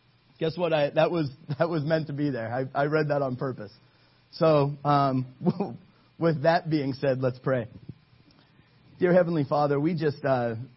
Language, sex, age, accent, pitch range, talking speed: English, male, 30-49, American, 110-130 Hz, 175 wpm